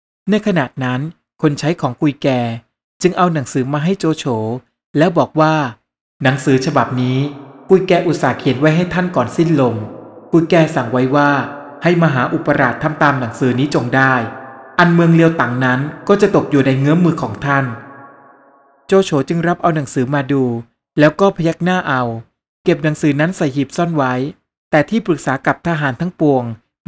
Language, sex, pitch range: Thai, male, 135-170 Hz